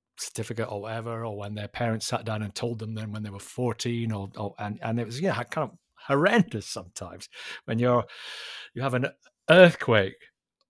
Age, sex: 50-69, male